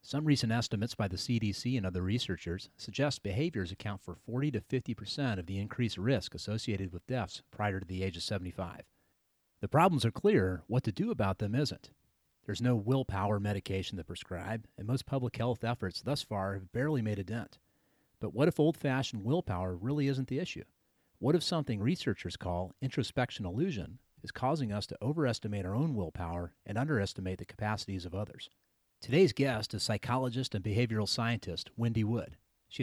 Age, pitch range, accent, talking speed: 40-59, 100-130 Hz, American, 180 wpm